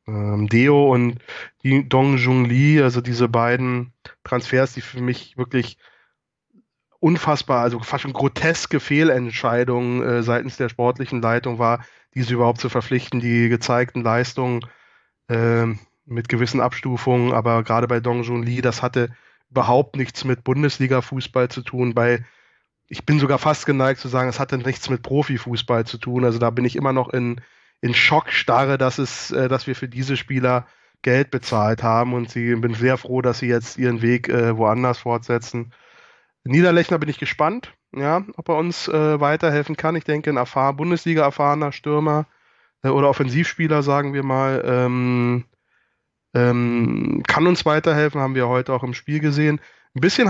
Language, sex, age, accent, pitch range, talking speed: German, male, 20-39, German, 120-145 Hz, 160 wpm